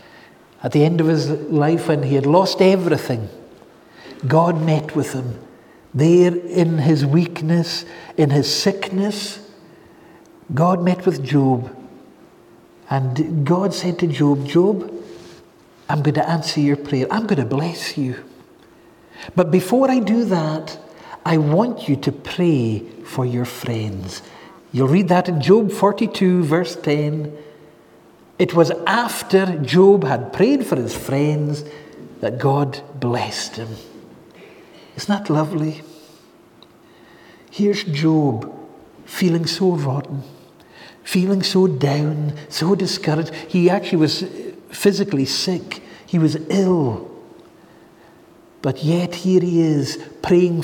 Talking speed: 125 wpm